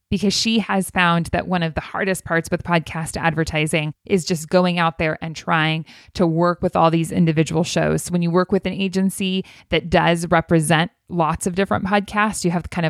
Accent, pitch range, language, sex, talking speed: American, 165-195 Hz, English, female, 200 wpm